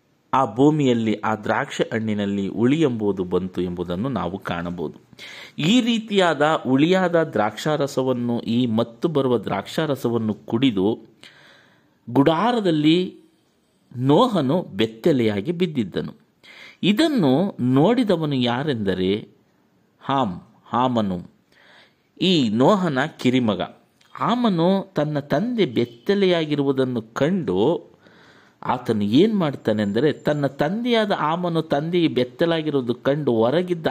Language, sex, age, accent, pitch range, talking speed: Kannada, male, 50-69, native, 115-175 Hz, 85 wpm